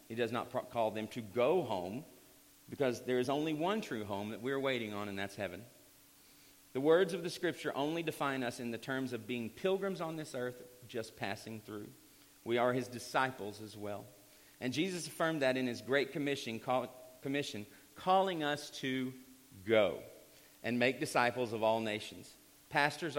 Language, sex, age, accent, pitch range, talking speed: English, male, 40-59, American, 110-145 Hz, 180 wpm